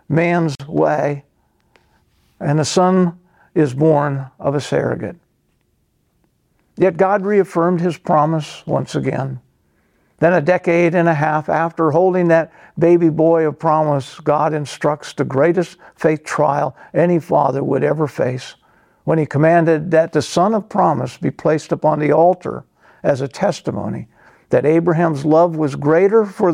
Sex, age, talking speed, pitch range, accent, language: male, 50-69, 140 wpm, 145-175 Hz, American, English